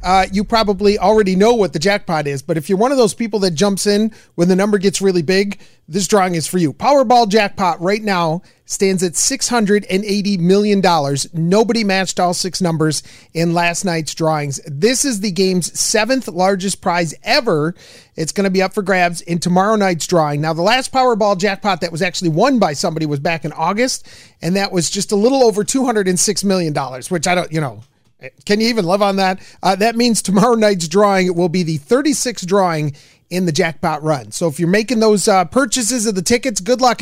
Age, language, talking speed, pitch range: 40-59, English, 205 wpm, 175-220 Hz